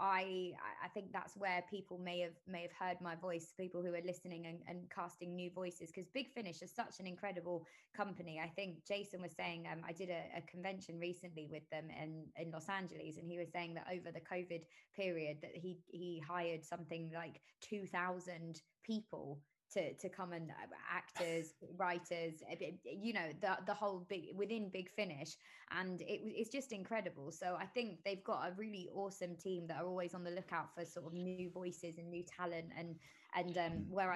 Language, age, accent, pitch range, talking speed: English, 20-39, British, 165-185 Hz, 200 wpm